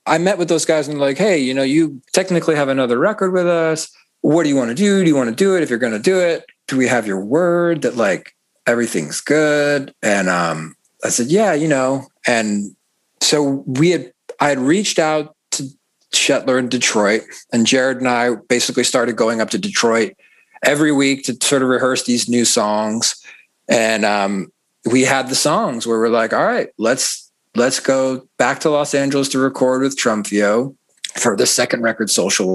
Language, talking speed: English, 200 wpm